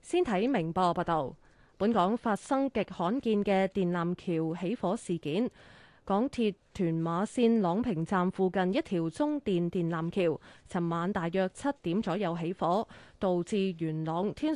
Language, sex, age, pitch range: Chinese, female, 20-39, 175-235 Hz